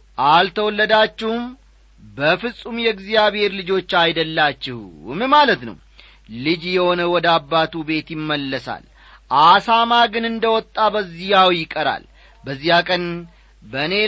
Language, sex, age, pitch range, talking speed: Amharic, male, 40-59, 150-220 Hz, 95 wpm